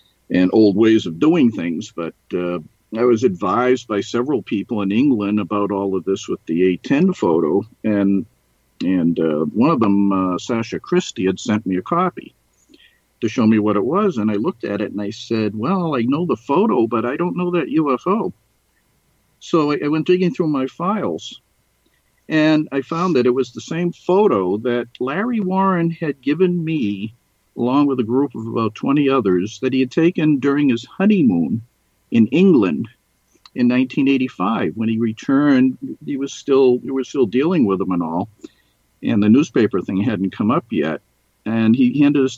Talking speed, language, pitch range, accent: 185 wpm, English, 110-145 Hz, American